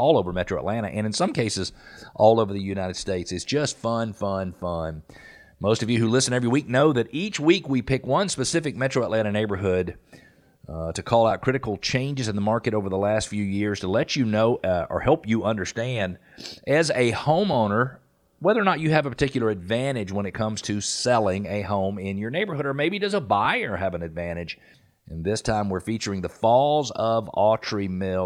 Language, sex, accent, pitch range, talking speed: English, male, American, 95-120 Hz, 210 wpm